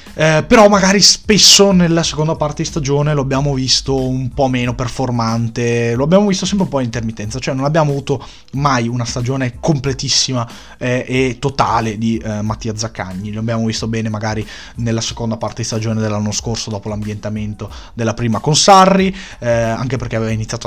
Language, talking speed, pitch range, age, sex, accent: Italian, 175 wpm, 110-145 Hz, 20-39, male, native